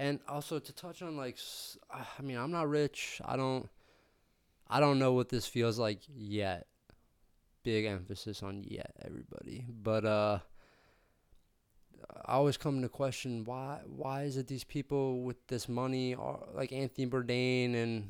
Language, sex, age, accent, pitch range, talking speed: English, male, 20-39, American, 105-125 Hz, 155 wpm